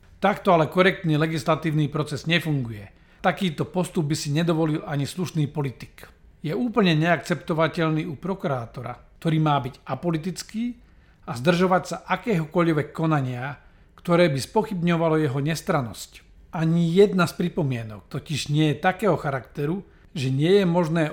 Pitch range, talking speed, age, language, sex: 145-175 Hz, 130 wpm, 50-69, Slovak, male